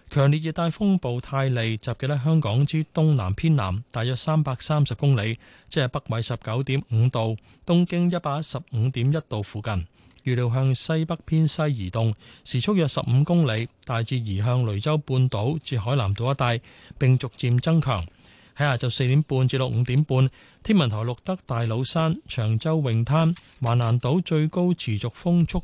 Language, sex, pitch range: Chinese, male, 115-155 Hz